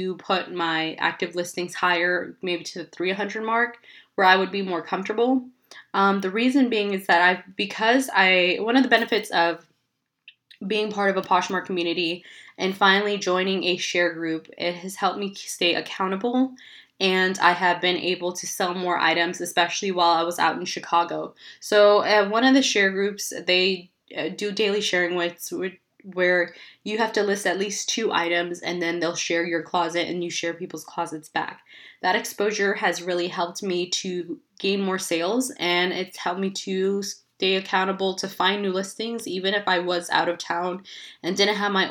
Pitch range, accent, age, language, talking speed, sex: 175-200 Hz, American, 20-39, English, 185 wpm, female